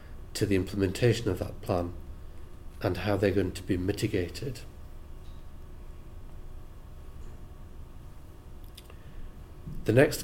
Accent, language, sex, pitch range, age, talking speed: British, English, male, 90-110 Hz, 40-59, 90 wpm